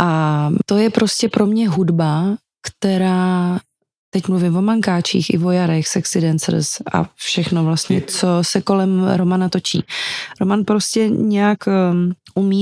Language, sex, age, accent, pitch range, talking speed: Czech, female, 30-49, native, 180-205 Hz, 135 wpm